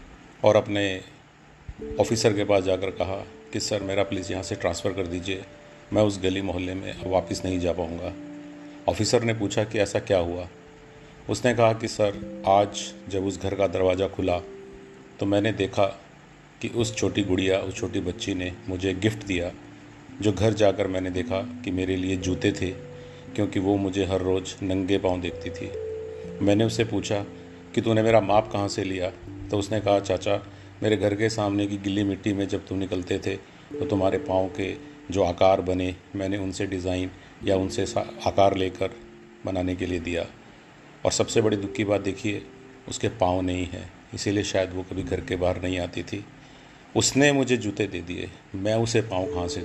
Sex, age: male, 40-59